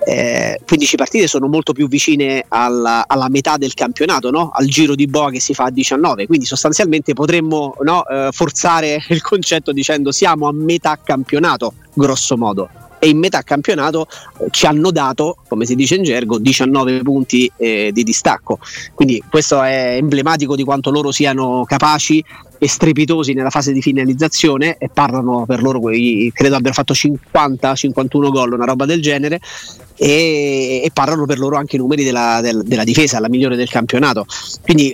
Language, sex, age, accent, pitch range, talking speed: Italian, male, 30-49, native, 135-155 Hz, 160 wpm